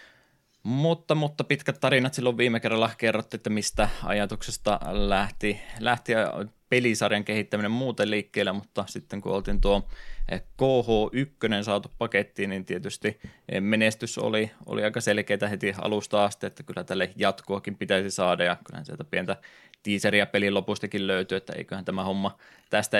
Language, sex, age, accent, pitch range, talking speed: Finnish, male, 20-39, native, 95-110 Hz, 140 wpm